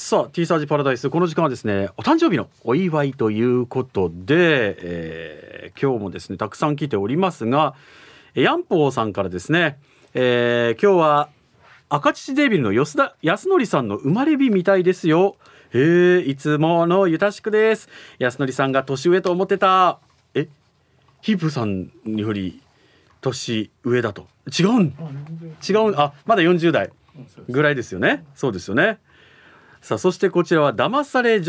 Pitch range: 120-175 Hz